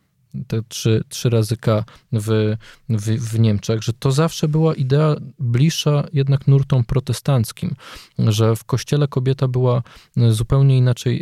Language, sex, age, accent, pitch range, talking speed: Polish, male, 20-39, native, 115-140 Hz, 135 wpm